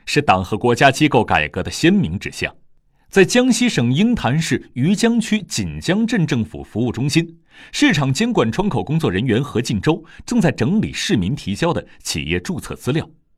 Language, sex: Chinese, male